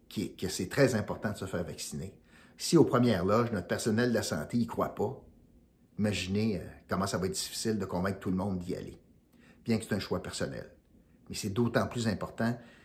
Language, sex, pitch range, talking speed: French, male, 105-135 Hz, 210 wpm